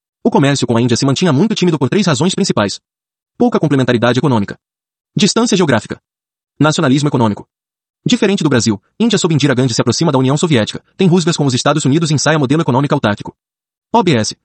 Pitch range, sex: 125-170 Hz, male